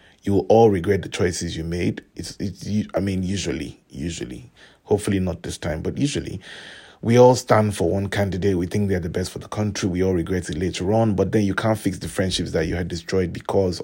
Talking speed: 225 wpm